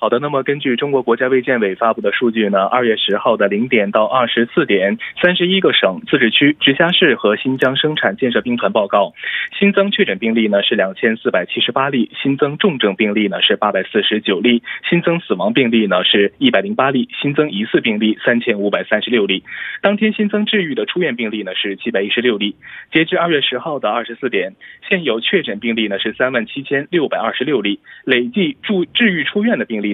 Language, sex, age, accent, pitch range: Korean, male, 20-39, Chinese, 110-165 Hz